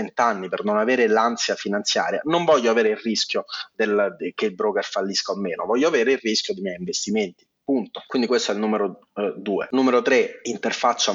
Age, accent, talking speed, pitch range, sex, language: 30-49, native, 200 wpm, 110-150 Hz, male, Italian